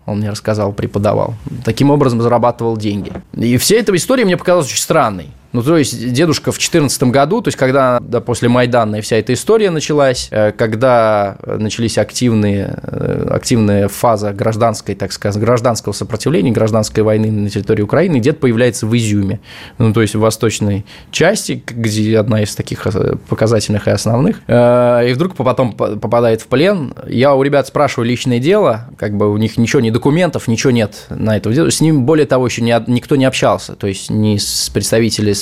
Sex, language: male, Russian